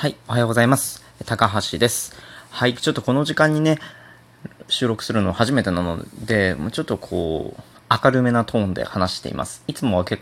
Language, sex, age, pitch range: Japanese, male, 20-39, 95-130 Hz